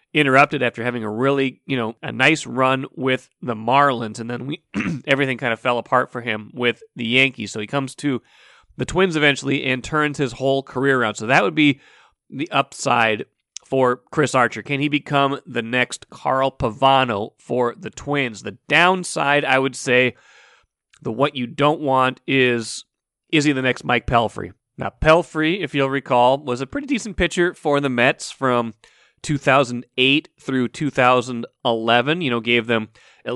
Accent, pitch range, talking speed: American, 120-145 Hz, 175 wpm